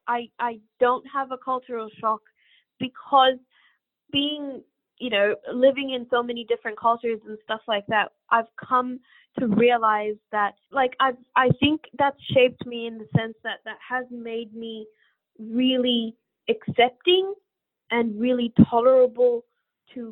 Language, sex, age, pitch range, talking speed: English, female, 20-39, 215-255 Hz, 135 wpm